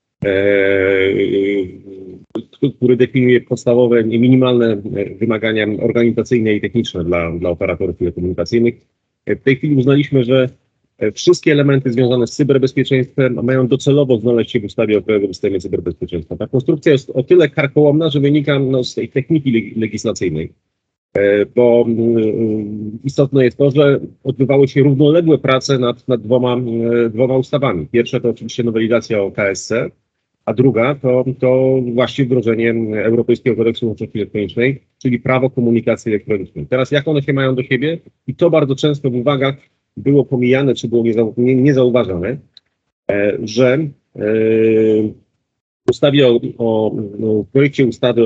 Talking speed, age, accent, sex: 140 wpm, 40-59, native, male